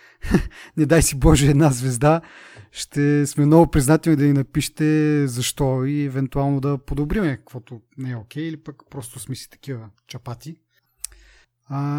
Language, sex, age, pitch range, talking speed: Bulgarian, male, 30-49, 125-150 Hz, 155 wpm